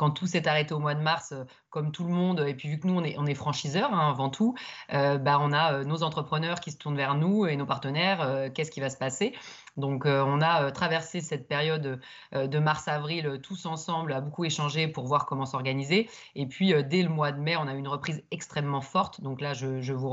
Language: French